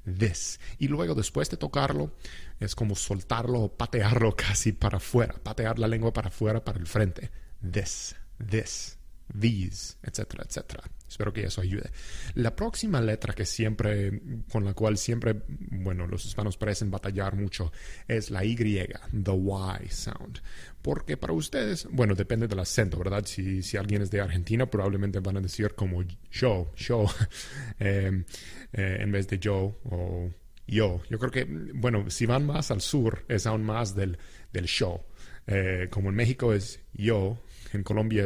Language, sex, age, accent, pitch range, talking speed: English, male, 30-49, Mexican, 95-115 Hz, 160 wpm